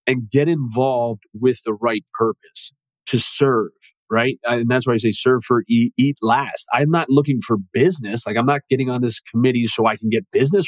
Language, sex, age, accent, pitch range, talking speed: English, male, 40-59, American, 115-130 Hz, 210 wpm